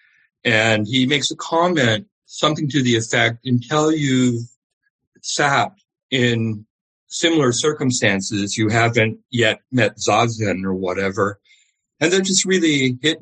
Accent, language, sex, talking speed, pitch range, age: American, English, male, 125 wpm, 110-145 Hz, 60-79